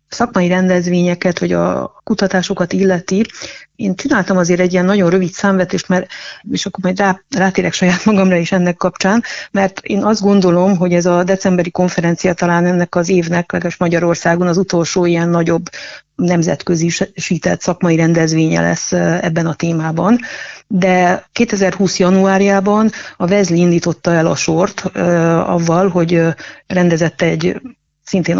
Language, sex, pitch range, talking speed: Hungarian, female, 170-190 Hz, 130 wpm